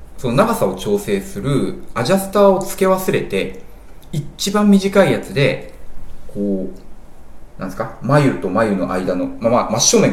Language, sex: Japanese, male